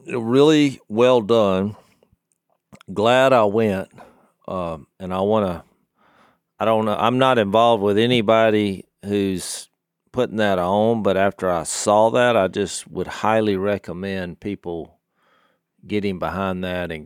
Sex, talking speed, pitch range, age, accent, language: male, 135 wpm, 90-110 Hz, 40-59, American, English